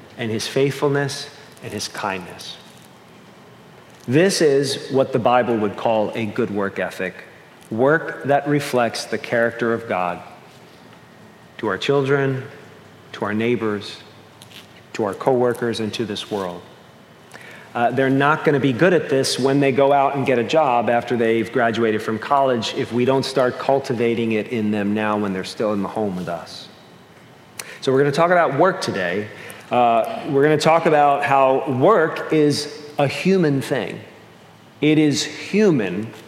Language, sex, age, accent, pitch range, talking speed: English, male, 40-59, American, 115-150 Hz, 165 wpm